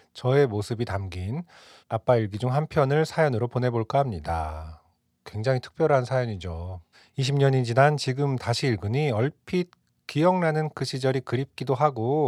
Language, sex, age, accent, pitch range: Korean, male, 40-59, native, 110-135 Hz